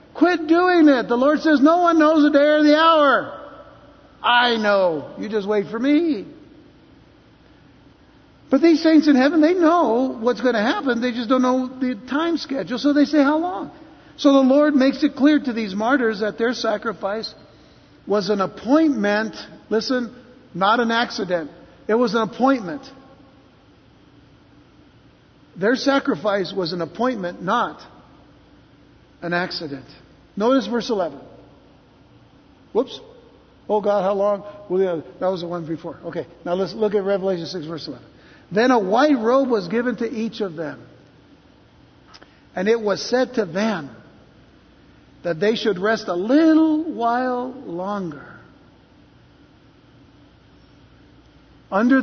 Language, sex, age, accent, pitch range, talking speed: English, male, 60-79, American, 200-275 Hz, 145 wpm